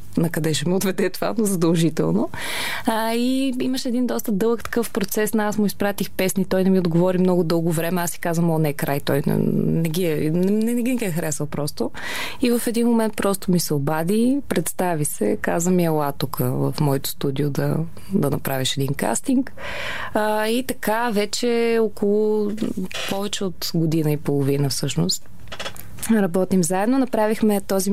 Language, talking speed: Bulgarian, 175 wpm